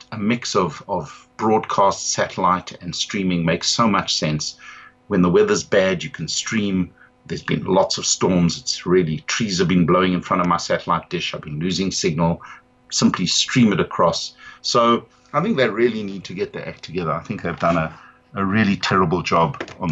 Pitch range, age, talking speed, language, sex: 90-125 Hz, 50-69, 195 wpm, English, male